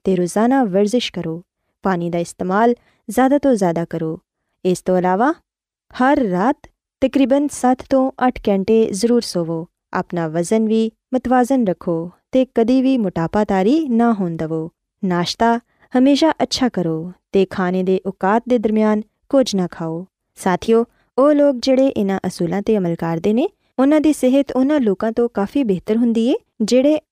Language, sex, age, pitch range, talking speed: Urdu, female, 20-39, 185-255 Hz, 140 wpm